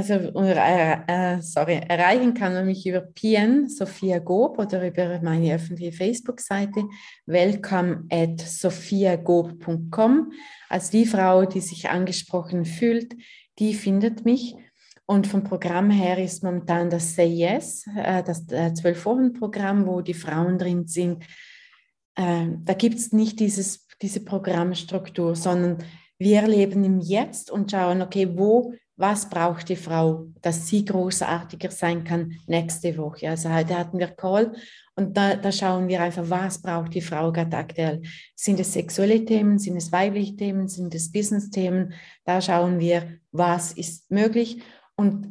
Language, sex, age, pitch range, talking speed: German, female, 20-39, 175-205 Hz, 150 wpm